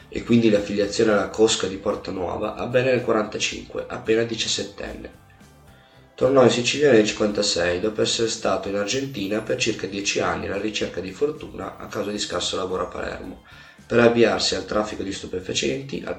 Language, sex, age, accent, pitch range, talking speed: Italian, male, 30-49, native, 100-115 Hz, 170 wpm